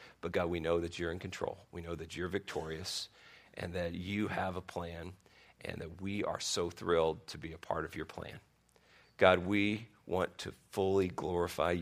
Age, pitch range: 40-59, 95-140 Hz